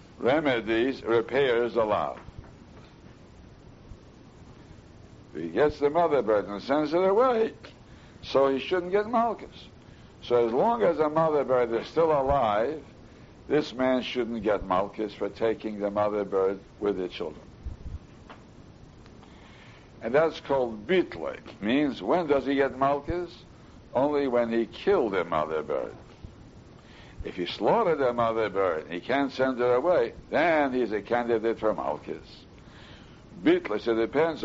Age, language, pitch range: 60-79, English, 115-180 Hz